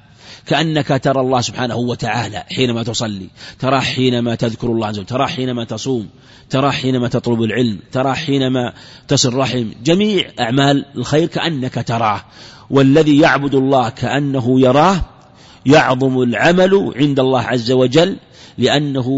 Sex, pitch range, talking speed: male, 125-155 Hz, 125 wpm